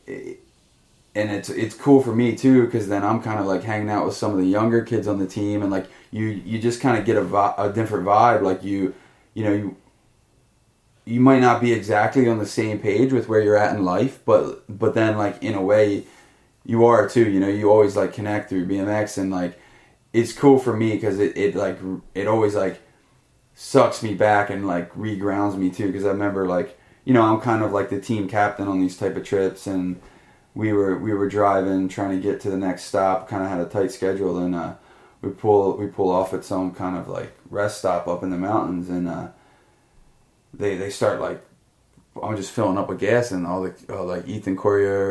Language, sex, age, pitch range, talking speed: English, male, 20-39, 95-115 Hz, 225 wpm